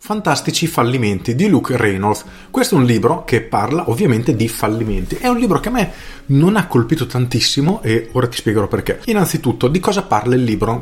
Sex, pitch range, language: male, 105-140 Hz, Italian